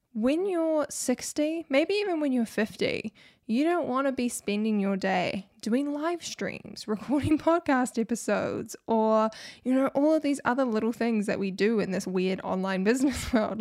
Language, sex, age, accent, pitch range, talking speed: English, female, 10-29, Australian, 200-265 Hz, 175 wpm